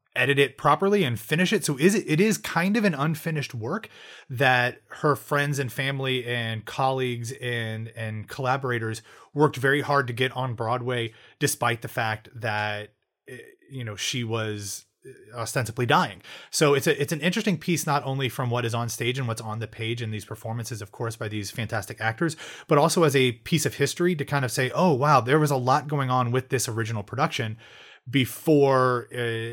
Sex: male